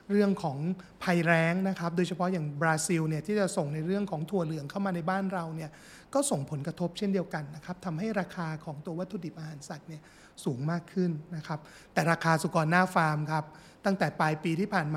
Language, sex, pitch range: Thai, male, 160-190 Hz